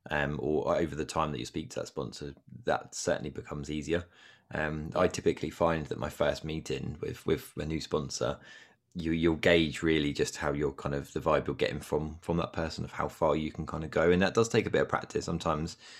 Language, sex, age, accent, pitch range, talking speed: English, male, 20-39, British, 75-80 Hz, 235 wpm